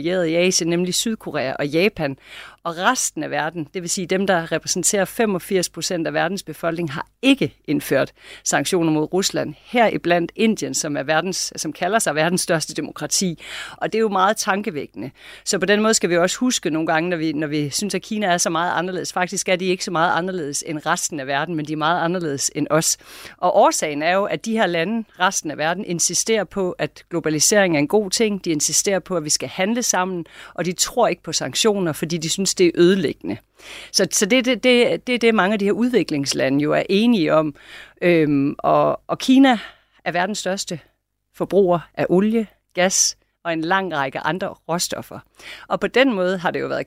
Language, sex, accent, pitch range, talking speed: Danish, female, native, 160-200 Hz, 210 wpm